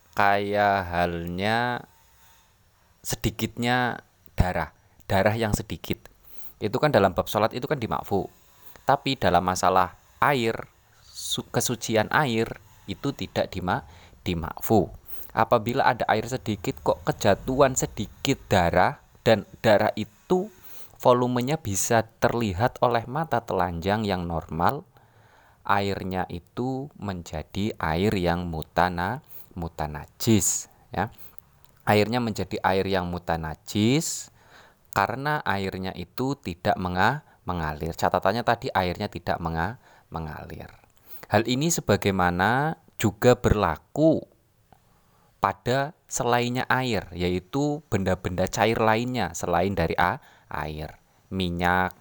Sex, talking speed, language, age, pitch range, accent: male, 100 wpm, Indonesian, 20-39, 90-120 Hz, native